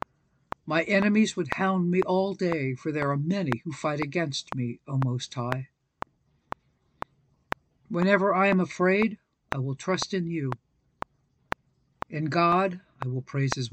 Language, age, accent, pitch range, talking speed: English, 60-79, American, 135-180 Hz, 145 wpm